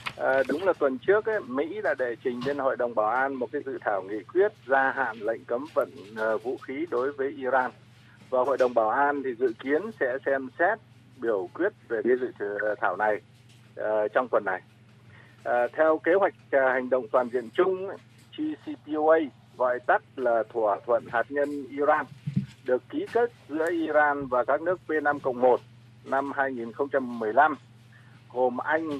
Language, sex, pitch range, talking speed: Vietnamese, male, 120-175 Hz, 180 wpm